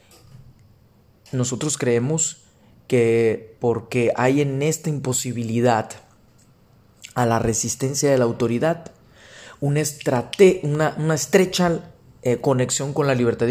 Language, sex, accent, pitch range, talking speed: Spanish, male, Mexican, 110-140 Hz, 105 wpm